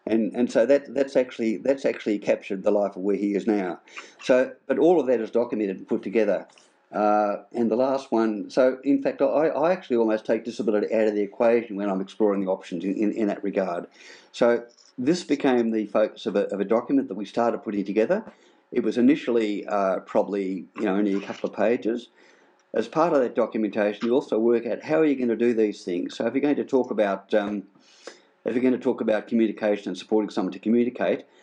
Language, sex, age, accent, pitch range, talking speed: English, male, 50-69, Australian, 105-120 Hz, 225 wpm